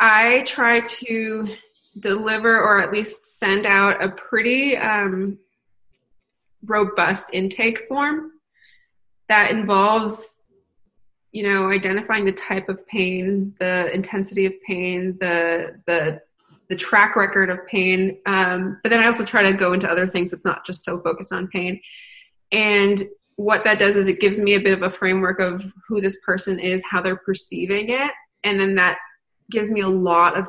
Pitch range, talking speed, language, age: 180-215 Hz, 165 wpm, English, 20-39